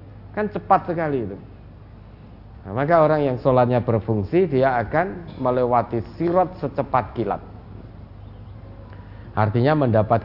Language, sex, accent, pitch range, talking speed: Indonesian, male, native, 105-145 Hz, 105 wpm